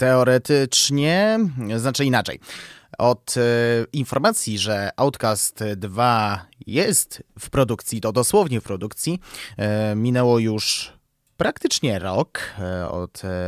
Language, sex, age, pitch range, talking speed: Polish, male, 20-39, 100-125 Hz, 90 wpm